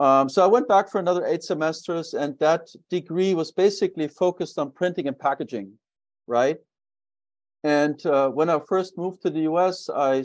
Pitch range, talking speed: 130-180 Hz, 175 wpm